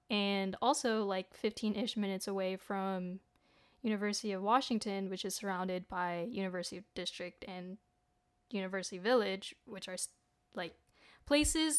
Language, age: English, 10-29